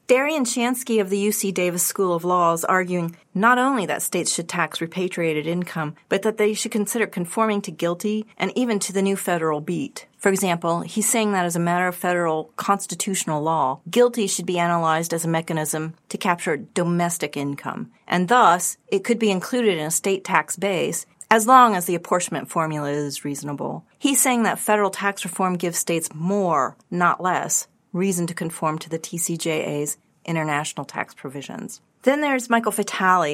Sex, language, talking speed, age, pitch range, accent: female, English, 180 wpm, 30-49, 160-200 Hz, American